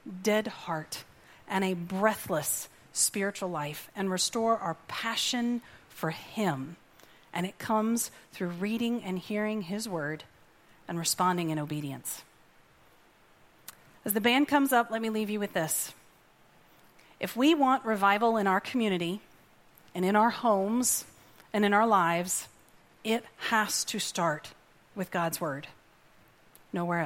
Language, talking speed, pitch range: English, 135 wpm, 185-230 Hz